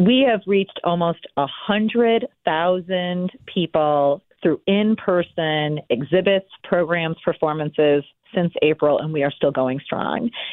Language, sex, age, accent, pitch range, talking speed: English, female, 40-59, American, 155-190 Hz, 110 wpm